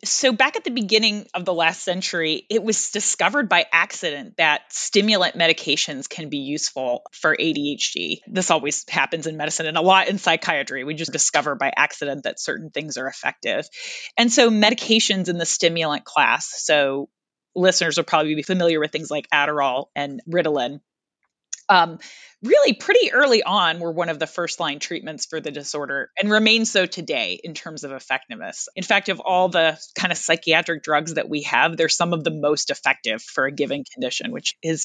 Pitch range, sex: 155-195 Hz, female